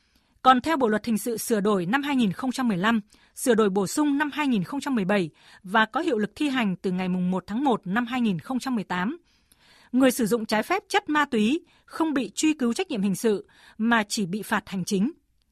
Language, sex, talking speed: Vietnamese, female, 195 wpm